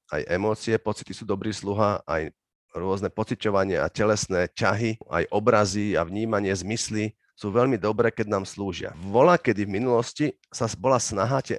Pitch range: 95-120 Hz